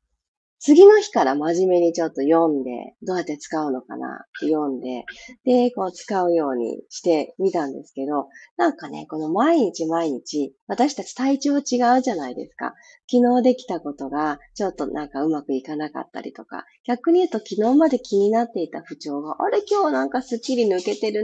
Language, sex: Japanese, female